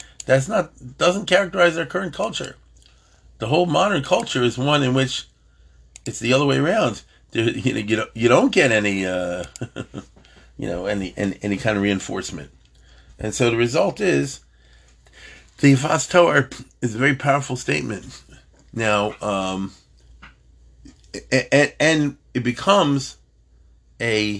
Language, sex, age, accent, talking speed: English, male, 40-59, American, 130 wpm